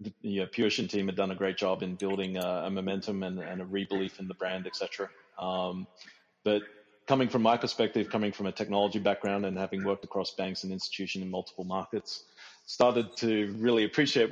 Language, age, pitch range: English, 30-49, 95-115 Hz